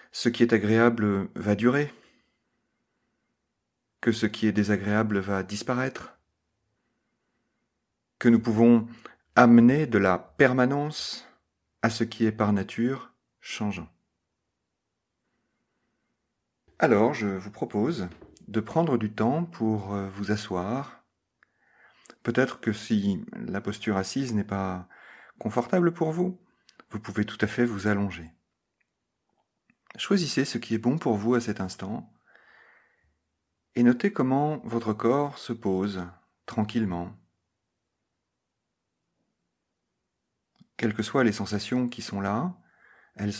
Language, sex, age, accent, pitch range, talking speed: French, male, 40-59, French, 90-120 Hz, 115 wpm